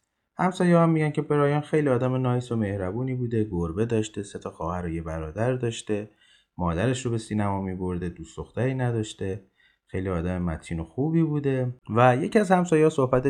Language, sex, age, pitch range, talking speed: Persian, male, 30-49, 95-135 Hz, 170 wpm